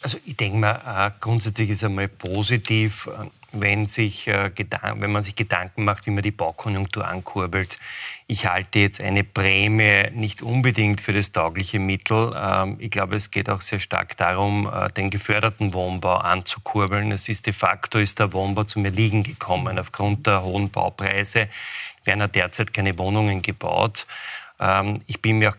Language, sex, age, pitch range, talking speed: German, male, 30-49, 100-110 Hz, 160 wpm